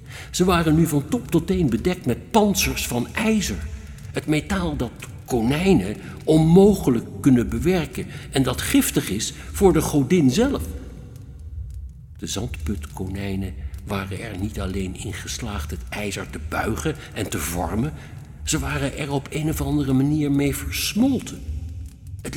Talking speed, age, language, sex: 140 wpm, 60-79, Dutch, male